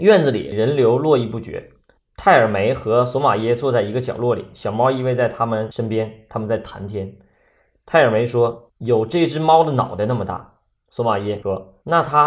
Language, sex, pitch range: Chinese, male, 105-135 Hz